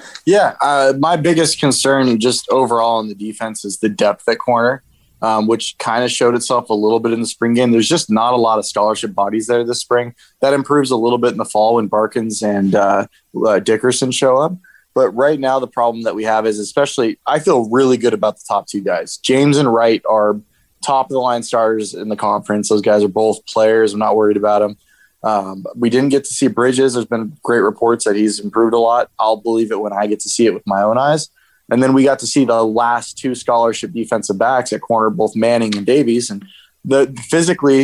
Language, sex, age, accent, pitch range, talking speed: English, male, 20-39, American, 110-130 Hz, 230 wpm